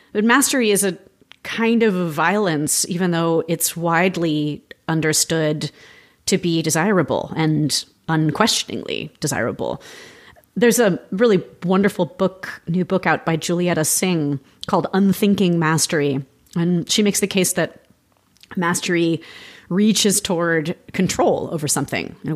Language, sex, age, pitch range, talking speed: English, female, 30-49, 160-205 Hz, 120 wpm